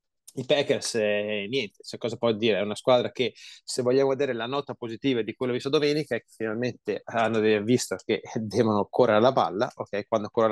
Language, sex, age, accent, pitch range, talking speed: Italian, male, 20-39, native, 110-140 Hz, 195 wpm